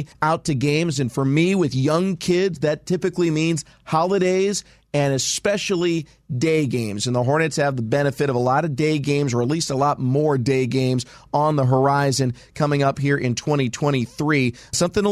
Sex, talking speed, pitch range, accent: male, 185 wpm, 130-155 Hz, American